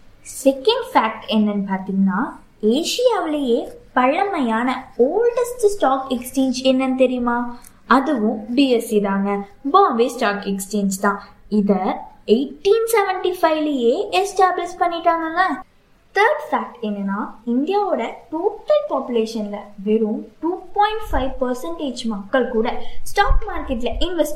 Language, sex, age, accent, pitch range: Tamil, female, 20-39, native, 220-315 Hz